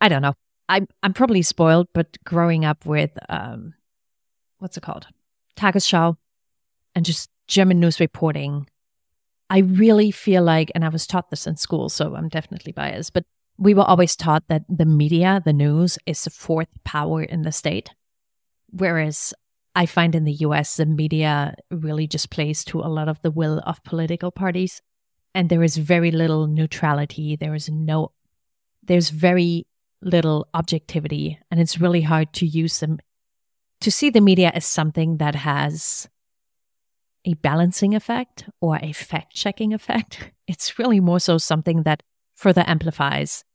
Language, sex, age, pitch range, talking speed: English, female, 30-49, 155-180 Hz, 160 wpm